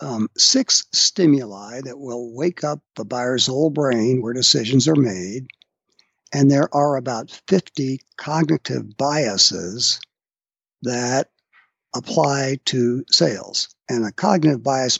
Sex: male